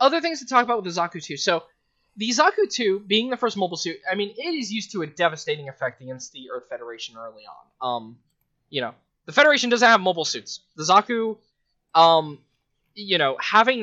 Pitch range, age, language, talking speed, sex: 130-185 Hz, 10-29, English, 210 wpm, male